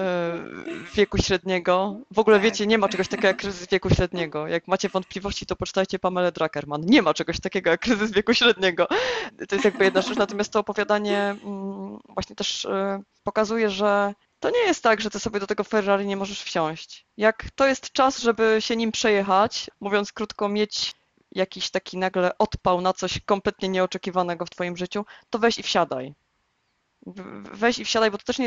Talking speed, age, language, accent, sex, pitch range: 180 wpm, 20-39, Polish, native, female, 180-215 Hz